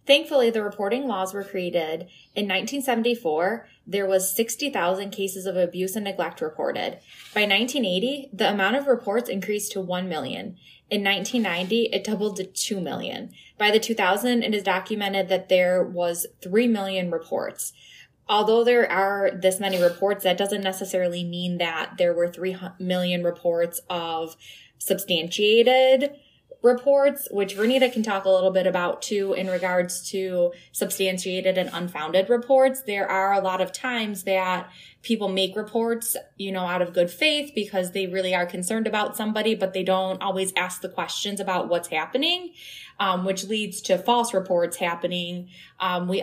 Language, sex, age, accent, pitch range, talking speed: English, female, 20-39, American, 180-220 Hz, 160 wpm